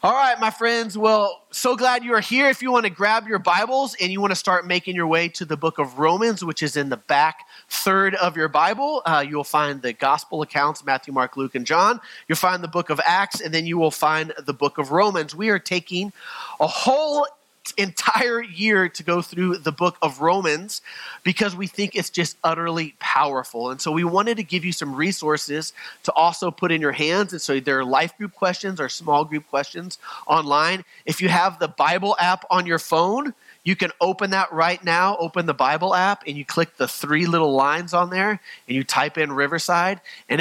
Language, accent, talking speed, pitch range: English, American, 220 wpm, 145-190 Hz